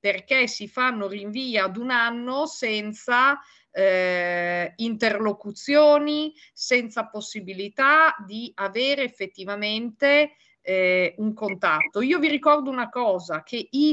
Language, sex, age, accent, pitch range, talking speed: Italian, female, 40-59, native, 195-280 Hz, 110 wpm